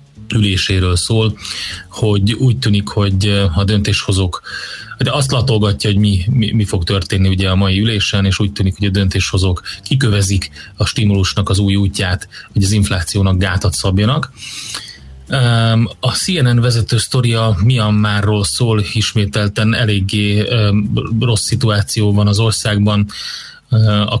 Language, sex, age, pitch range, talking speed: Hungarian, male, 30-49, 100-110 Hz, 130 wpm